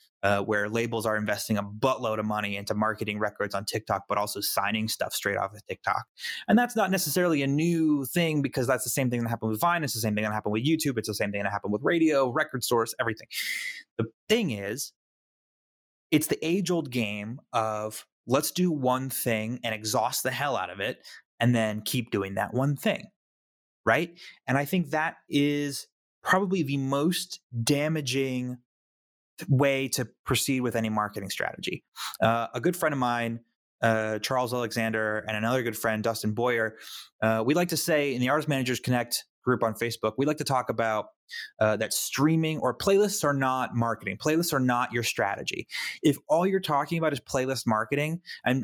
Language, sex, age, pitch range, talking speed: English, male, 20-39, 110-145 Hz, 195 wpm